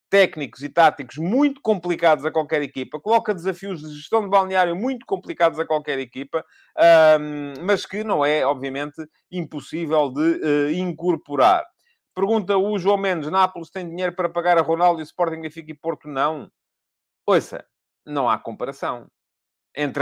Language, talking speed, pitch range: English, 155 wpm, 145-190 Hz